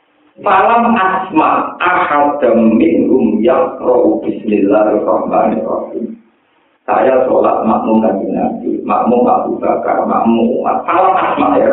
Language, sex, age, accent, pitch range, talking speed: Indonesian, male, 50-69, native, 190-280 Hz, 95 wpm